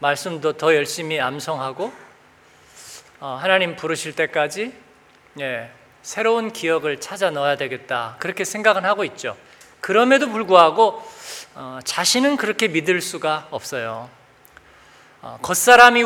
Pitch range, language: 160-230 Hz, Korean